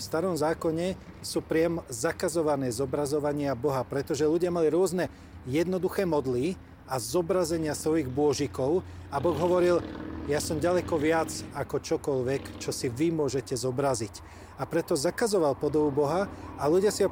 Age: 40-59